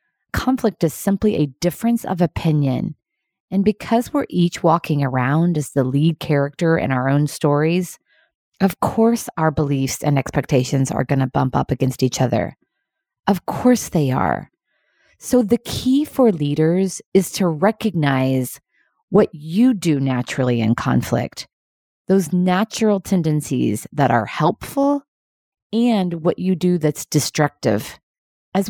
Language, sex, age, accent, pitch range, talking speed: English, female, 30-49, American, 140-190 Hz, 140 wpm